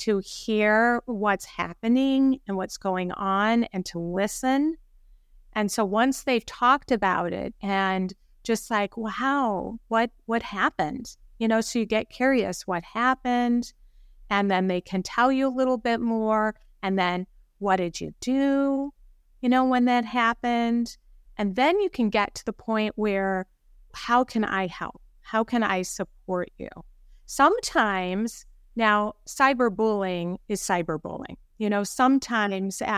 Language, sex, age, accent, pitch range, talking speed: English, female, 30-49, American, 195-240 Hz, 145 wpm